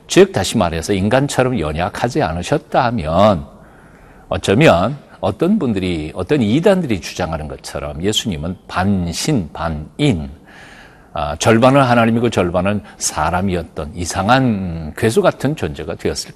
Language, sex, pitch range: Korean, male, 85-120 Hz